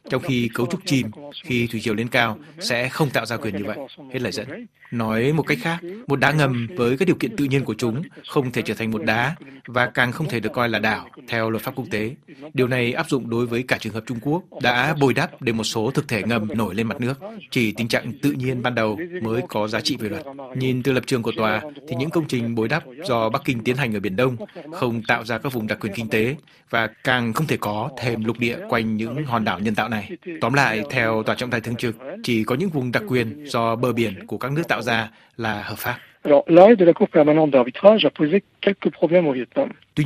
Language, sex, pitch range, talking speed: Vietnamese, male, 115-140 Hz, 240 wpm